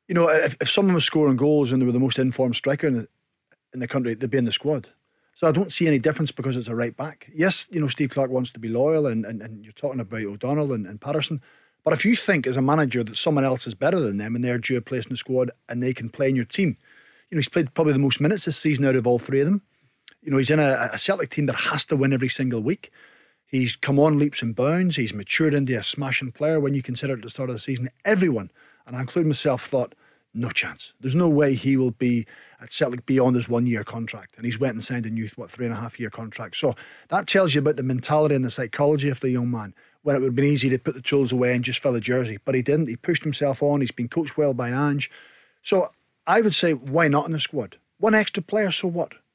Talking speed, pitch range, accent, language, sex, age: 270 wpm, 125-155 Hz, British, English, male, 40-59